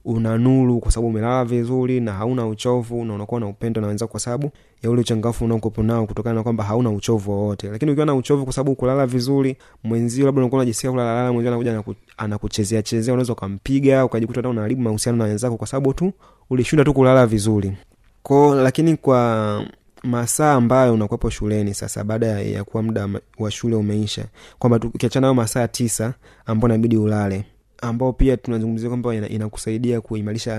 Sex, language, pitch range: male, Swahili, 110-125 Hz